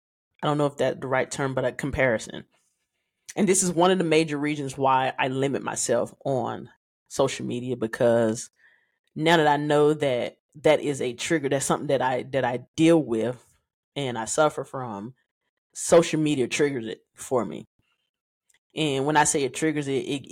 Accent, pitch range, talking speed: American, 135-210 Hz, 185 wpm